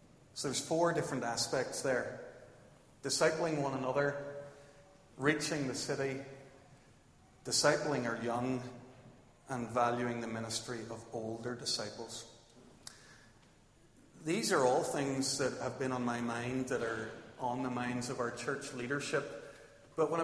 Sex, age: male, 40-59